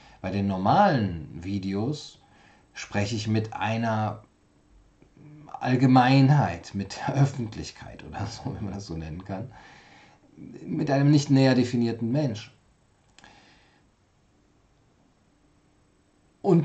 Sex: male